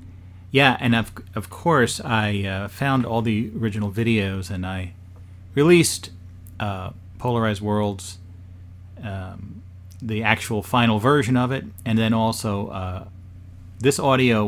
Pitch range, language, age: 95-115 Hz, English, 40-59